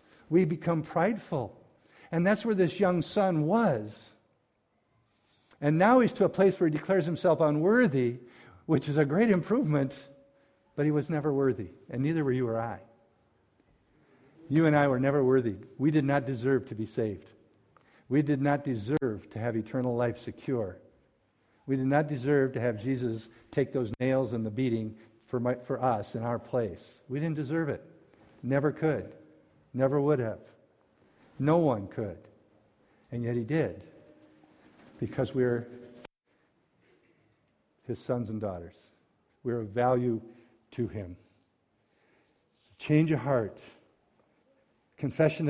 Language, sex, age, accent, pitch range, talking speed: English, male, 60-79, American, 115-150 Hz, 150 wpm